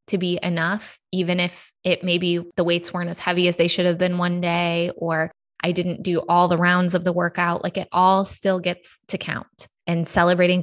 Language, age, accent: English, 20-39, American